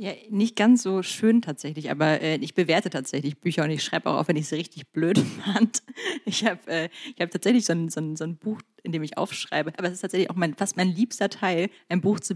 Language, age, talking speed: German, 30-49, 250 wpm